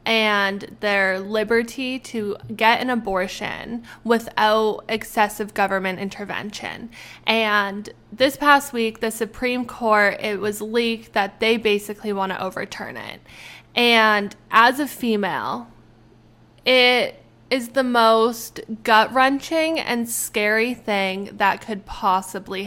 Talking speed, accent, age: 110 wpm, American, 10-29